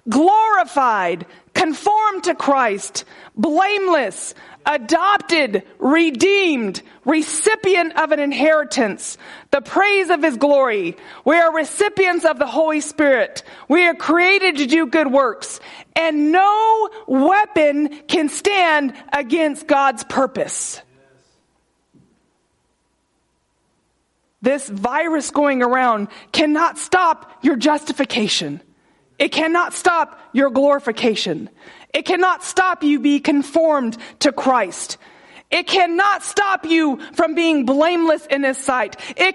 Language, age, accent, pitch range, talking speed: English, 40-59, American, 280-350 Hz, 105 wpm